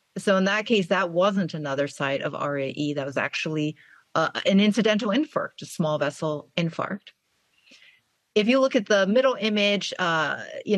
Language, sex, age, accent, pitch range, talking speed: English, female, 30-49, American, 155-190 Hz, 165 wpm